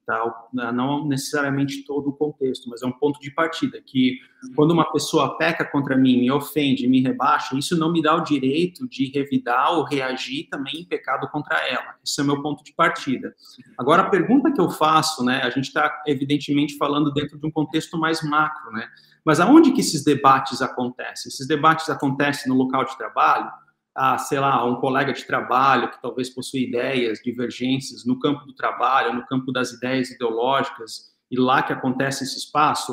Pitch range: 130-155 Hz